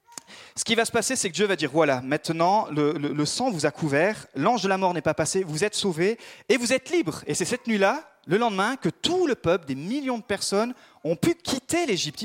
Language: French